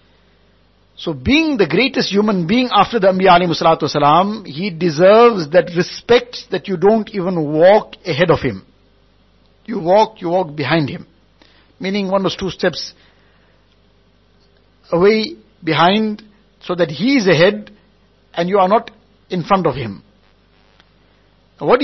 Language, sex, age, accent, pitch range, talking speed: English, male, 60-79, Indian, 140-210 Hz, 135 wpm